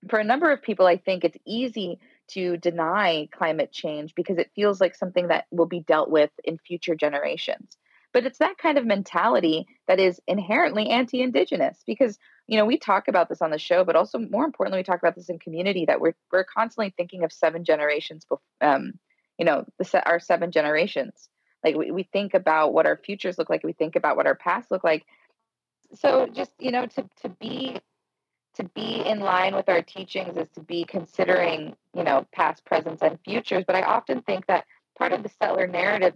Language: English